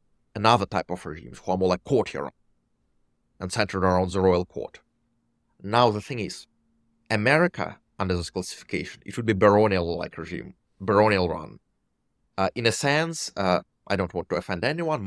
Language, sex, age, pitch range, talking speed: English, male, 30-49, 90-120 Hz, 155 wpm